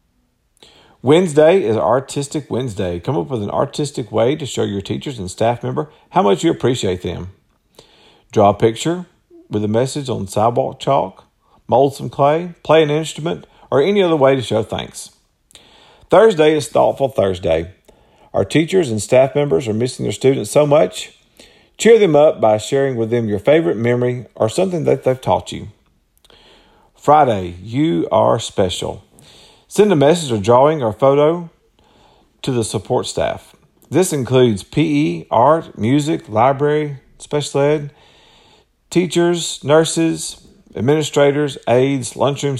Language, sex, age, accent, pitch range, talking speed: English, male, 50-69, American, 110-150 Hz, 145 wpm